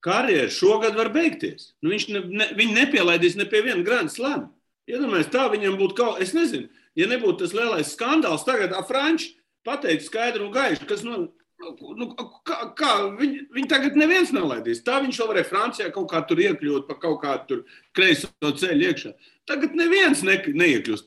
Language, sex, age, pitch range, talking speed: English, male, 50-69, 200-335 Hz, 155 wpm